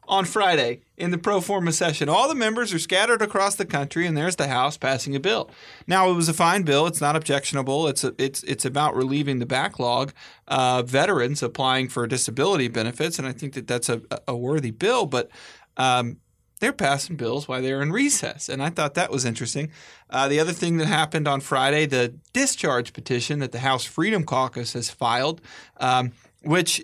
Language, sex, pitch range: English, male, 125-160 Hz